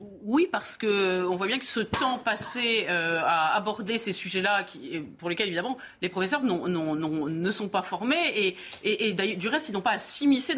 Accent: French